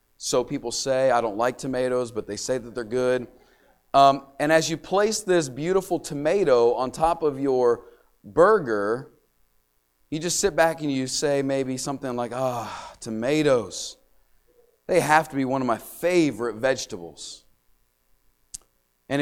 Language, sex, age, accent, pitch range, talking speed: English, male, 30-49, American, 120-150 Hz, 150 wpm